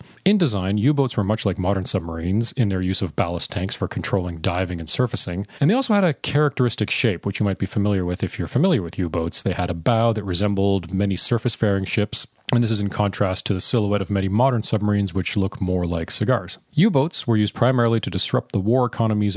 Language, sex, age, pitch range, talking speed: English, male, 30-49, 95-125 Hz, 225 wpm